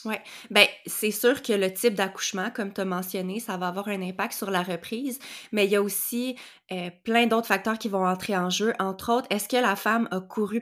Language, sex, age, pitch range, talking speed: French, female, 20-39, 185-225 Hz, 235 wpm